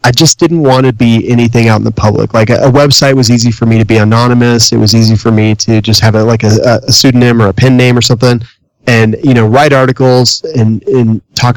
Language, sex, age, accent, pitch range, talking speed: English, male, 30-49, American, 110-130 Hz, 250 wpm